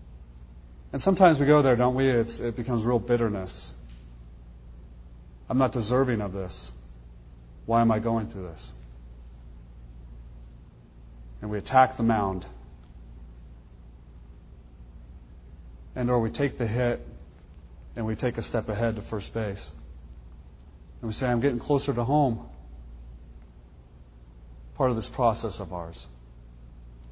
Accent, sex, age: American, male, 40-59